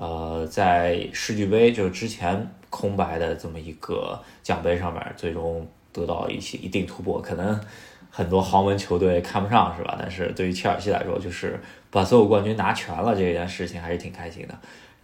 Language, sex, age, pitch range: Chinese, male, 20-39, 90-105 Hz